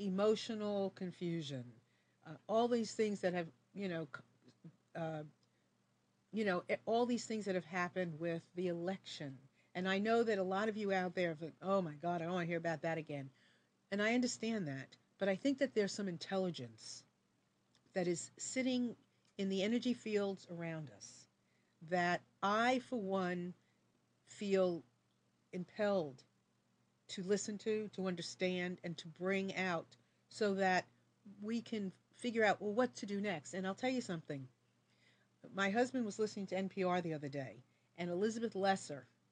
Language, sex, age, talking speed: English, female, 50-69, 165 wpm